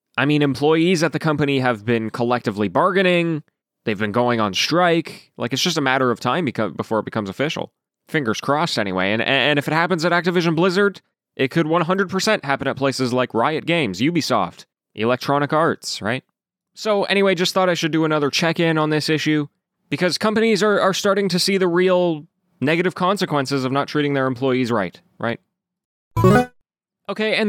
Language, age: English, 20-39